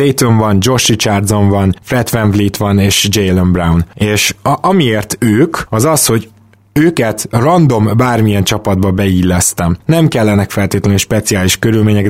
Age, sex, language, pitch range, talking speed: 20-39, male, Hungarian, 100-120 Hz, 145 wpm